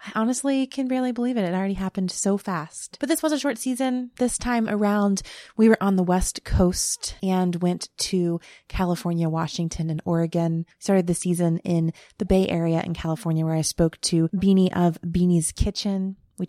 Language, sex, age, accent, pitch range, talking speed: English, female, 20-39, American, 165-190 Hz, 185 wpm